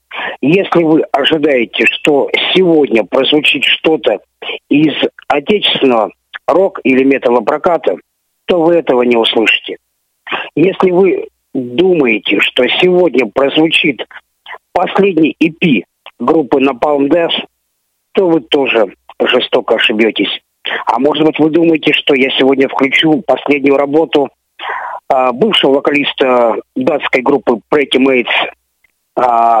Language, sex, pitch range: Russian, male, 135-175 Hz